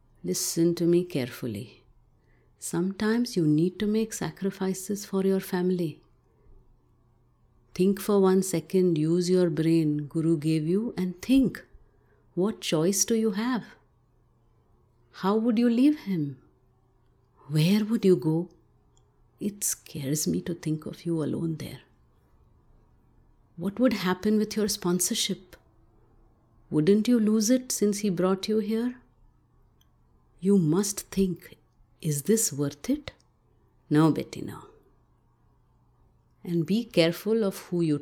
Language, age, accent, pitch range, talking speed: English, 50-69, Indian, 145-200 Hz, 125 wpm